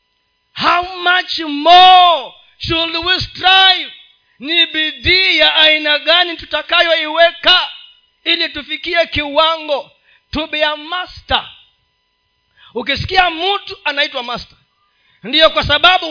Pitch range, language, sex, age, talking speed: 285-350 Hz, Swahili, male, 40-59, 90 wpm